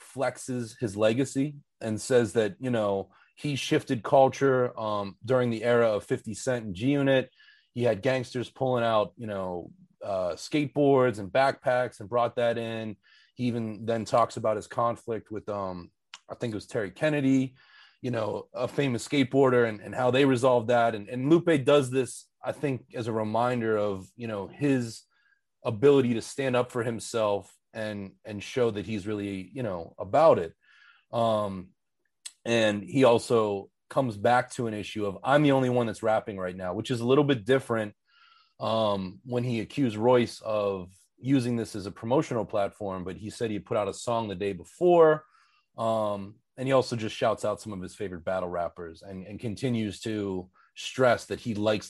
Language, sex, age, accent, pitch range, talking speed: English, male, 30-49, American, 105-130 Hz, 185 wpm